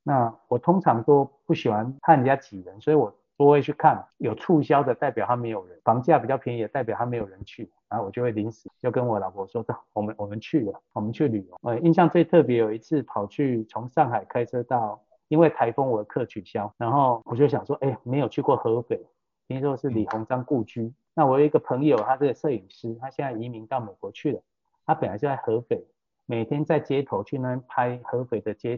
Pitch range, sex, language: 115-150 Hz, male, Chinese